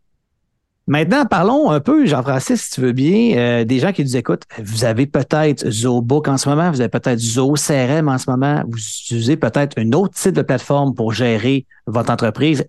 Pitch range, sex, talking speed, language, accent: 115-155 Hz, male, 195 wpm, French, Canadian